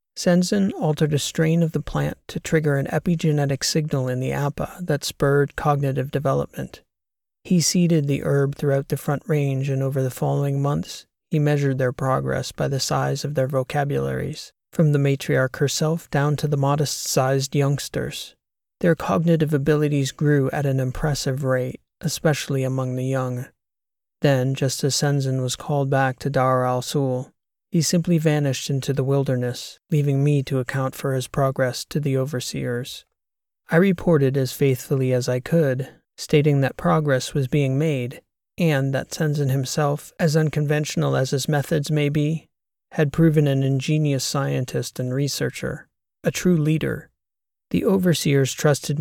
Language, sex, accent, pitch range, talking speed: English, male, American, 130-155 Hz, 155 wpm